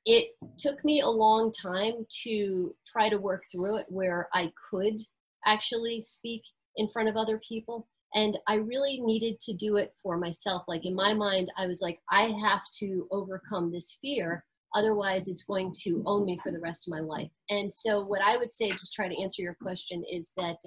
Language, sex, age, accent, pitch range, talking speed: English, female, 30-49, American, 165-200 Hz, 205 wpm